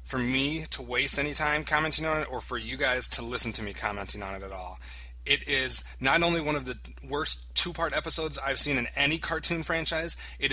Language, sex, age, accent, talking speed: English, male, 30-49, American, 220 wpm